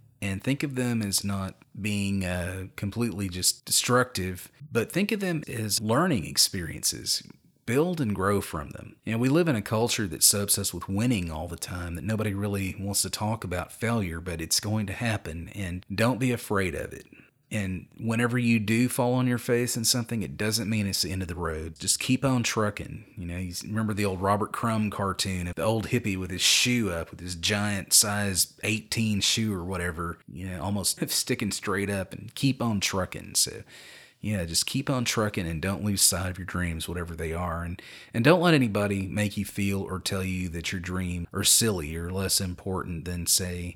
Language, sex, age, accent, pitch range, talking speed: English, male, 30-49, American, 90-110 Hz, 210 wpm